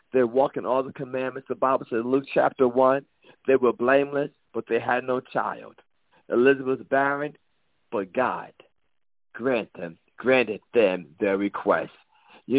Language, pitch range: English, 135-185 Hz